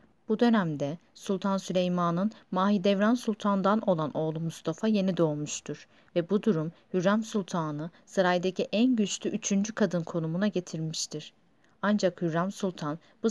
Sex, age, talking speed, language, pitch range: female, 40-59, 120 wpm, Turkish, 170-210 Hz